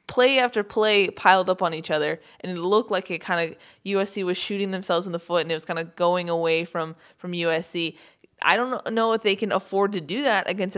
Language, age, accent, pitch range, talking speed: English, 20-39, American, 180-220 Hz, 240 wpm